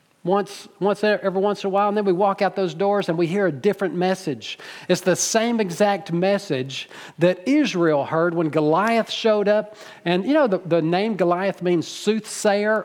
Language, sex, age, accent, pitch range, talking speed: English, male, 50-69, American, 170-220 Hz, 190 wpm